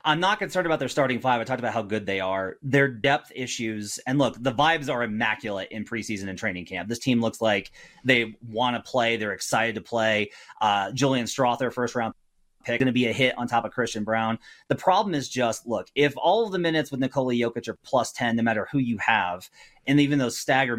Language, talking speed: English, 235 wpm